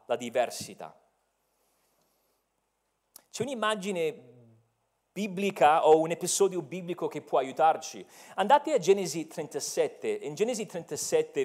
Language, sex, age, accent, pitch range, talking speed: Italian, male, 40-59, native, 165-255 Hz, 100 wpm